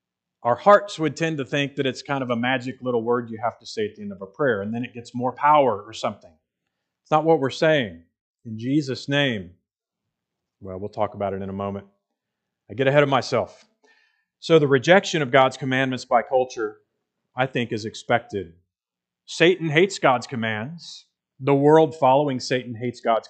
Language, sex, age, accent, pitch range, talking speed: English, male, 40-59, American, 115-145 Hz, 195 wpm